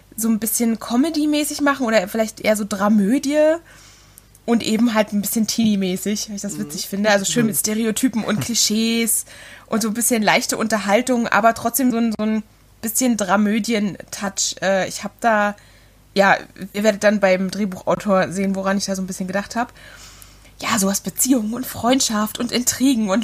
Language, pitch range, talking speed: German, 195-230 Hz, 175 wpm